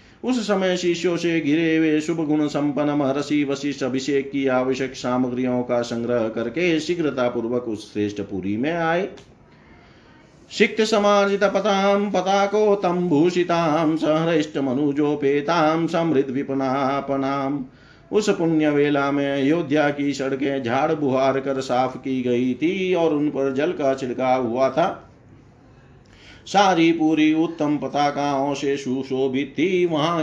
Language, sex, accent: Hindi, male, native